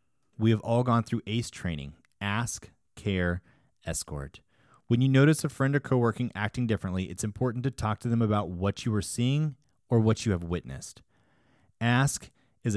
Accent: American